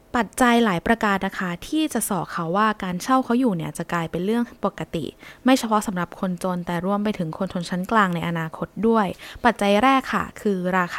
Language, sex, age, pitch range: Thai, female, 20-39, 175-240 Hz